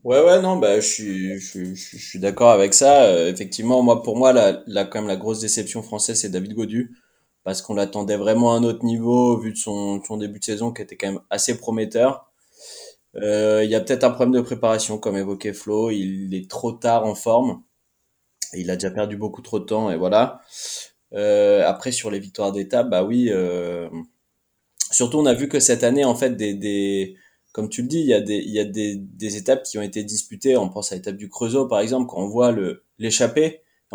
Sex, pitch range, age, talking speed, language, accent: male, 105-135 Hz, 20-39, 230 wpm, French, French